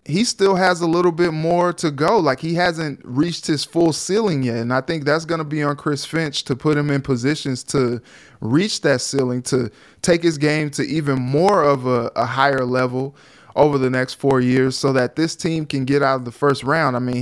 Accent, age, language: American, 20-39, English